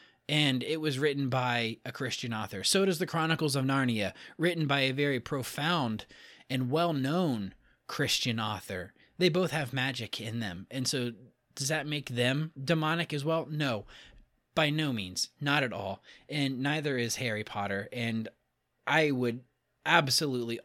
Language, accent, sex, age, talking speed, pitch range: English, American, male, 30-49, 155 wpm, 125-160 Hz